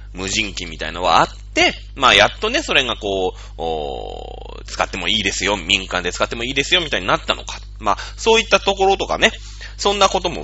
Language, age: Japanese, 30-49